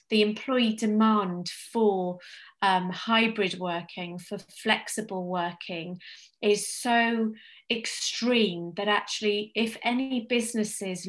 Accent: British